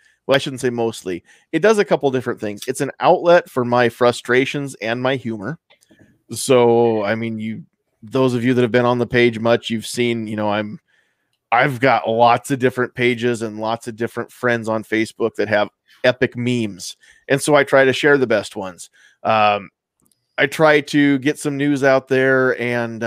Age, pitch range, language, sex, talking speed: 20-39, 110-130 Hz, English, male, 195 wpm